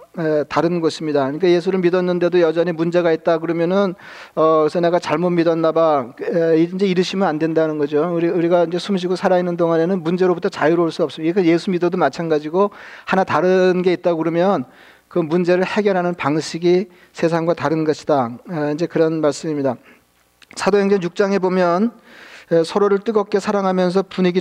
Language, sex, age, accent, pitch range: Korean, male, 40-59, native, 165-185 Hz